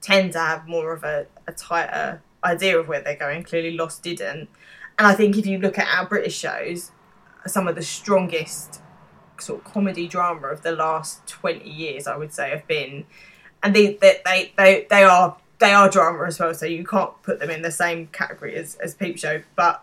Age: 20-39